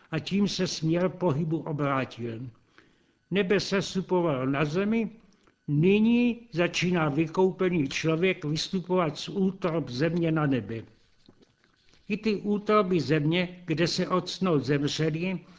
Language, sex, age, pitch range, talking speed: Czech, male, 60-79, 155-185 Hz, 110 wpm